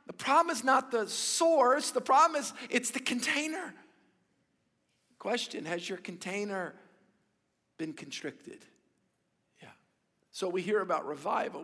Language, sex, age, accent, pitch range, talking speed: English, male, 50-69, American, 180-225 Hz, 125 wpm